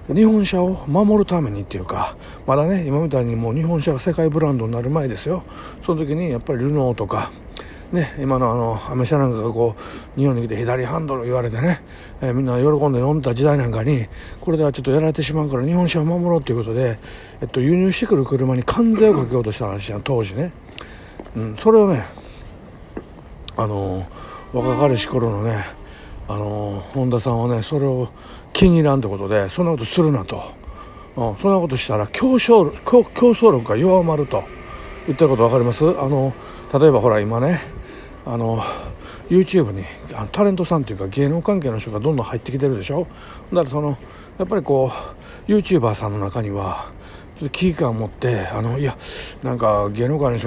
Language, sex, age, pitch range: Japanese, male, 60-79, 110-165 Hz